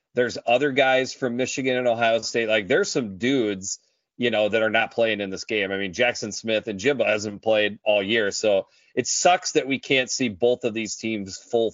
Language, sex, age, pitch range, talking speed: English, male, 30-49, 105-125 Hz, 220 wpm